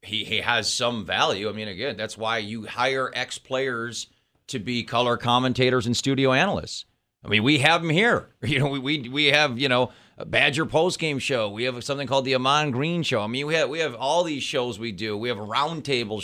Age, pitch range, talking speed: 40-59, 120-150 Hz, 230 wpm